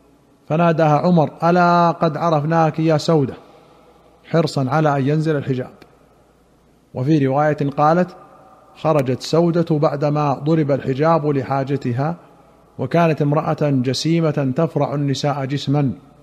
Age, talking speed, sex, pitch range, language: 50-69, 100 wpm, male, 145-165 Hz, Arabic